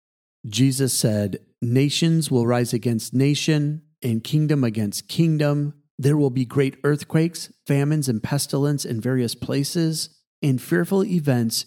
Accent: American